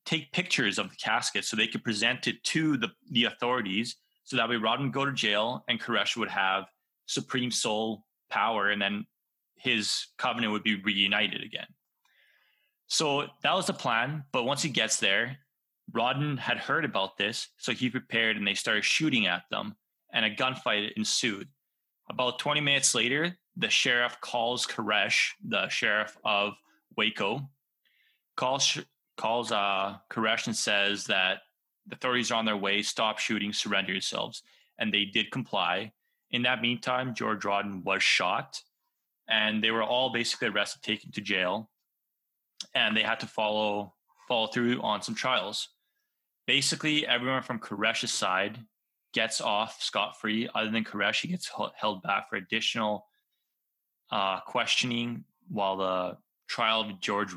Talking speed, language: 155 wpm, English